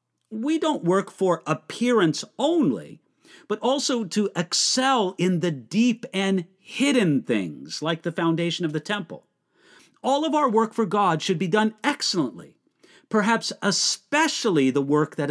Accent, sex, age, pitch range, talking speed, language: American, male, 50-69, 165-225 Hz, 145 wpm, English